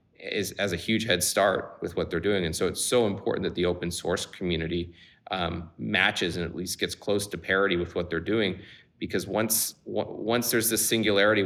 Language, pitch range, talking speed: Danish, 90-100 Hz, 210 wpm